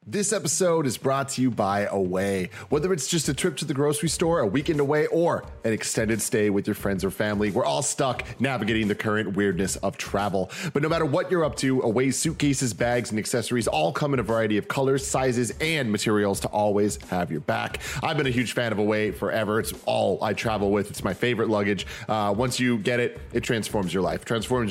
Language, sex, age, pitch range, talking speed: English, male, 30-49, 105-140 Hz, 225 wpm